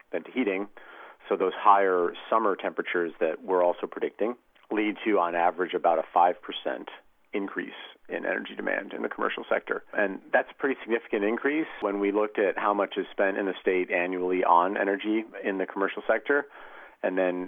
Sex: male